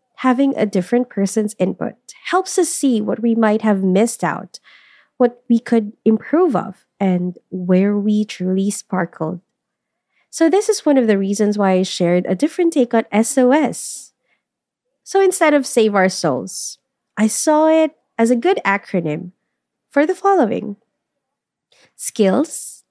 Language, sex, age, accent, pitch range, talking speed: English, female, 20-39, Filipino, 195-275 Hz, 145 wpm